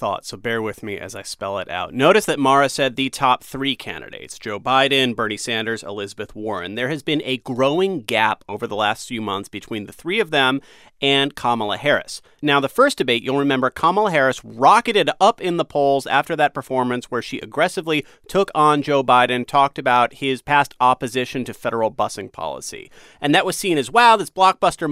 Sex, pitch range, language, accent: male, 125-155 Hz, English, American